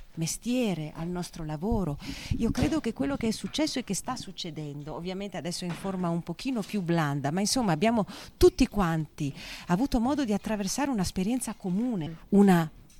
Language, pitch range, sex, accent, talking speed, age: Italian, 165-230 Hz, female, native, 160 wpm, 40-59